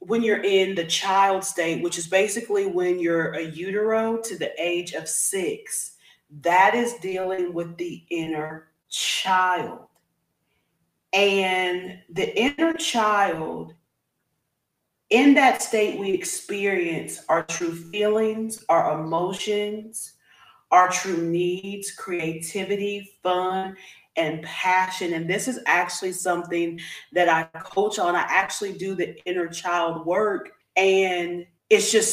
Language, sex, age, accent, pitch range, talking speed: English, female, 30-49, American, 170-210 Hz, 120 wpm